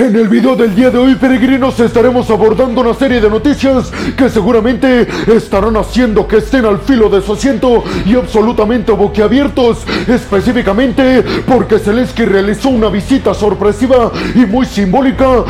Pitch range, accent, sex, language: 205-250 Hz, Mexican, male, Spanish